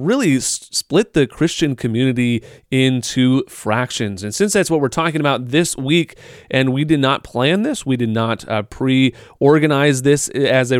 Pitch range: 115-150 Hz